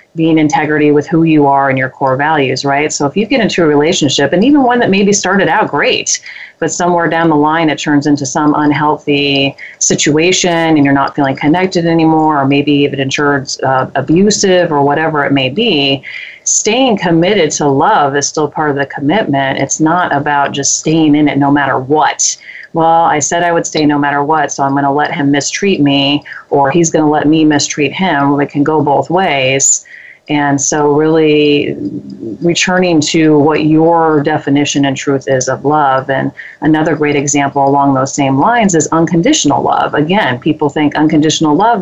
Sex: female